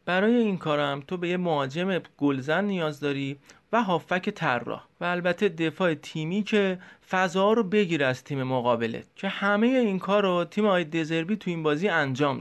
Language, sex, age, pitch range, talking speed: Persian, male, 30-49, 150-200 Hz, 175 wpm